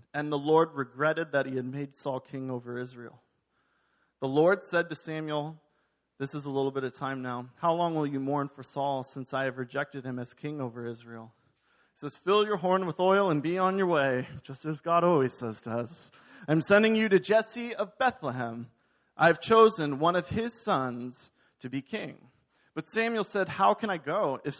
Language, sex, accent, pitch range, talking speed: English, male, American, 135-185 Hz, 205 wpm